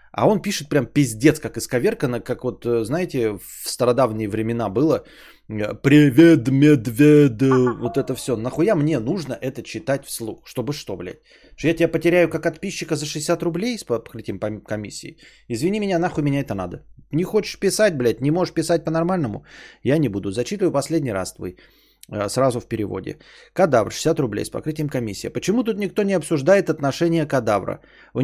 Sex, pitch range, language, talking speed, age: male, 115-165 Hz, Bulgarian, 170 wpm, 20-39